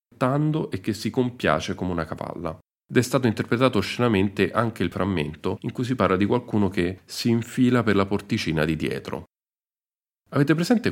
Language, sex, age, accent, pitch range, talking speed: Italian, male, 40-59, native, 80-115 Hz, 170 wpm